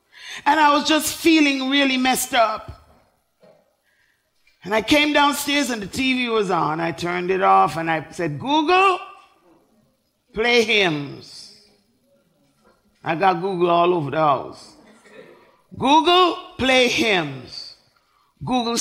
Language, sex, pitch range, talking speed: English, male, 190-295 Hz, 120 wpm